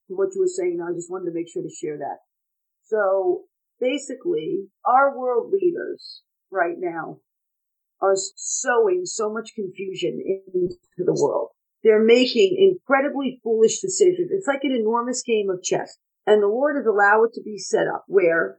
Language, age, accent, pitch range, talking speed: English, 50-69, American, 230-380 Hz, 165 wpm